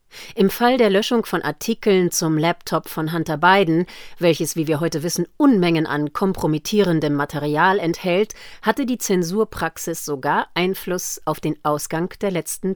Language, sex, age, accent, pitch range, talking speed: German, female, 40-59, German, 150-205 Hz, 145 wpm